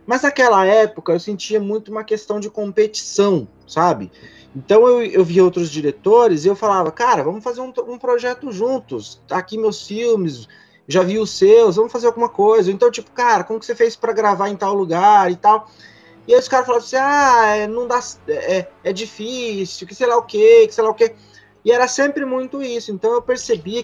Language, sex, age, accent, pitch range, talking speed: Portuguese, male, 20-39, Brazilian, 190-255 Hz, 205 wpm